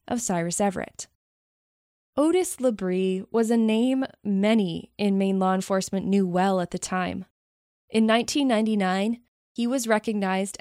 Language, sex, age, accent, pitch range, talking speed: English, female, 20-39, American, 190-230 Hz, 130 wpm